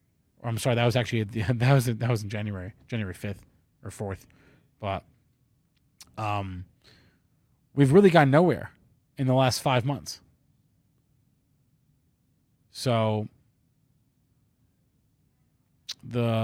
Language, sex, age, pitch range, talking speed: English, male, 30-49, 115-145 Hz, 110 wpm